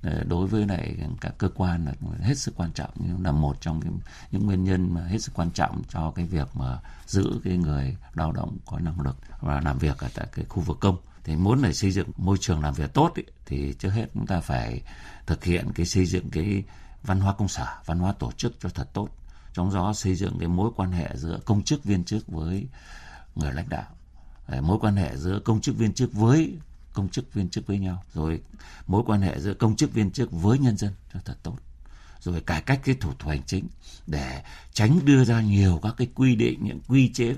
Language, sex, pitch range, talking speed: Vietnamese, male, 75-105 Hz, 235 wpm